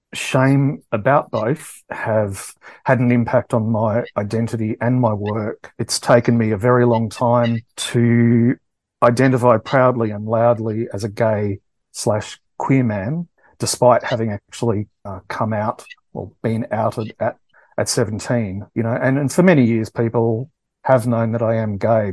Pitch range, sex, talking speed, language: 110-125 Hz, male, 155 wpm, English